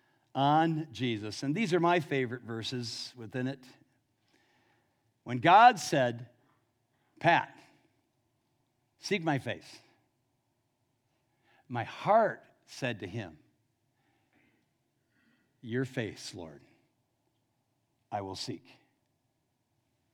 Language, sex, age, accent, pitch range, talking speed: English, male, 60-79, American, 120-145 Hz, 85 wpm